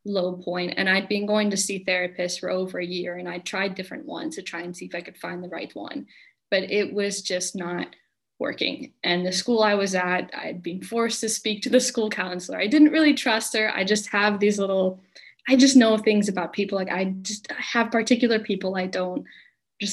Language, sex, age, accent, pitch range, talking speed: English, female, 10-29, American, 180-210 Hz, 225 wpm